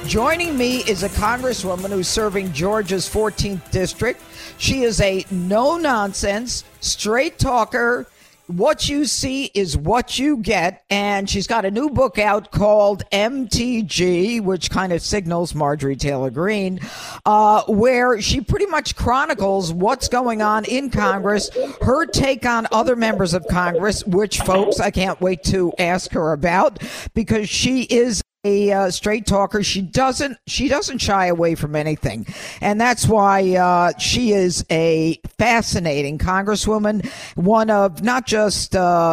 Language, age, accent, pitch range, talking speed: English, 50-69, American, 175-215 Hz, 145 wpm